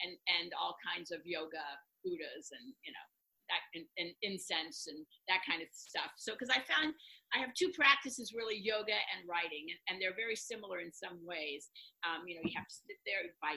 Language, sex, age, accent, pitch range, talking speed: English, female, 50-69, American, 185-245 Hz, 210 wpm